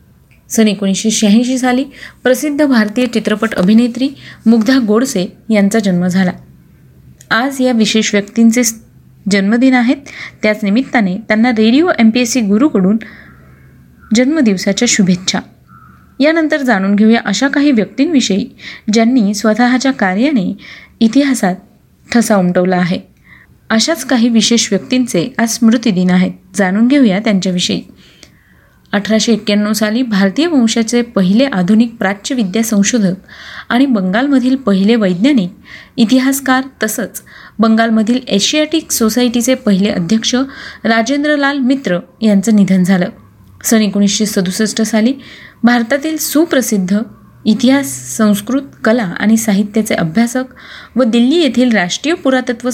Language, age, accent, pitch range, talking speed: Marathi, 20-39, native, 205-255 Hz, 105 wpm